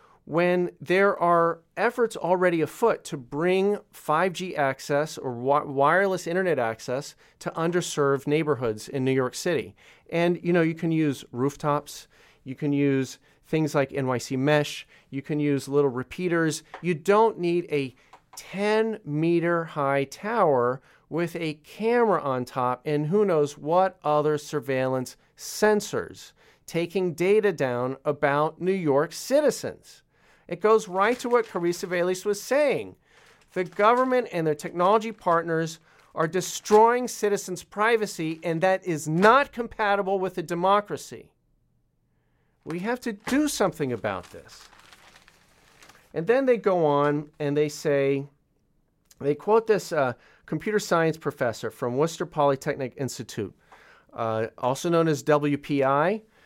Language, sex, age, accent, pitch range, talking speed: English, male, 40-59, American, 145-190 Hz, 135 wpm